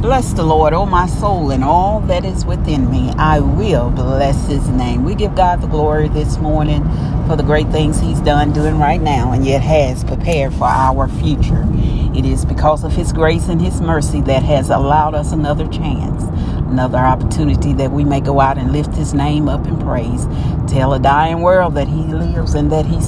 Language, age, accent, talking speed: English, 40-59, American, 205 wpm